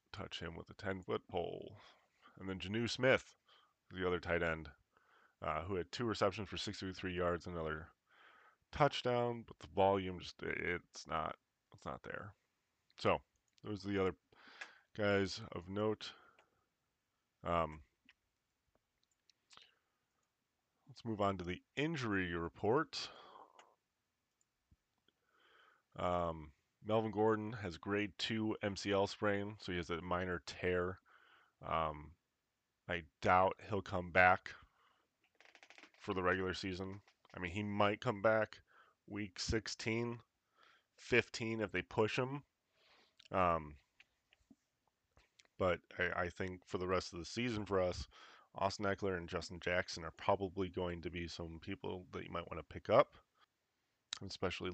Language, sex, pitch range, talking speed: English, male, 90-105 Hz, 130 wpm